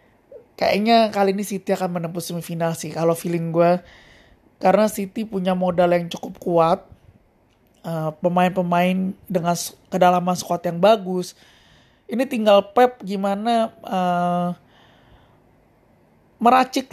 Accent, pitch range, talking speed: native, 180-230 Hz, 110 wpm